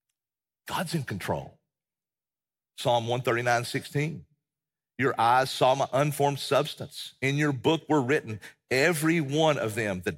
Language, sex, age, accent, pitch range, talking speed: English, male, 50-69, American, 110-145 Hz, 130 wpm